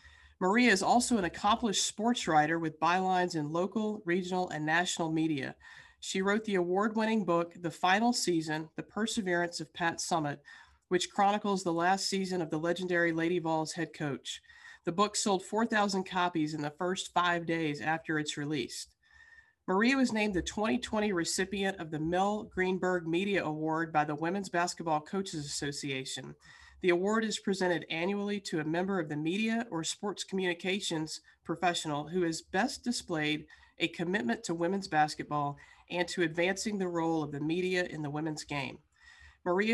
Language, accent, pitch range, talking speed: English, American, 165-205 Hz, 165 wpm